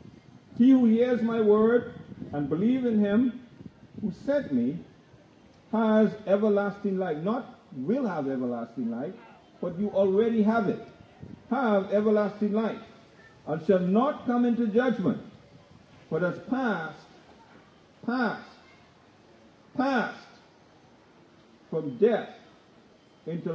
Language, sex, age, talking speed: English, male, 50-69, 105 wpm